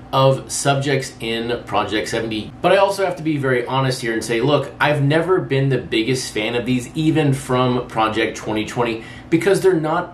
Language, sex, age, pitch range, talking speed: English, male, 30-49, 120-145 Hz, 190 wpm